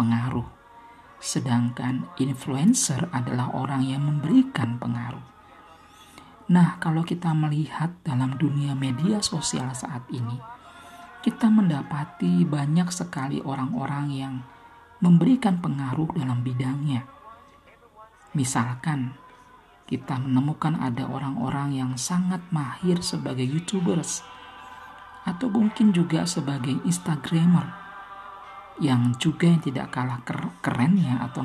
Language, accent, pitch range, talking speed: Indonesian, native, 130-175 Hz, 95 wpm